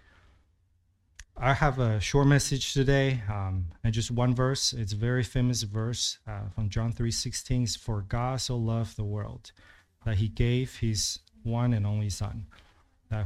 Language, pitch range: English, 100-120 Hz